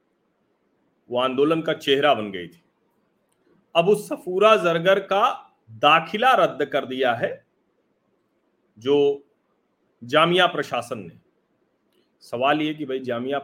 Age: 40-59